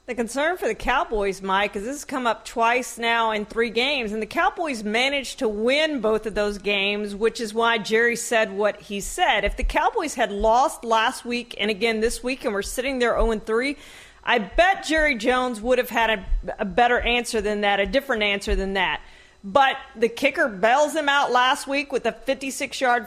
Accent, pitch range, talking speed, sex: American, 230-290 Hz, 210 wpm, female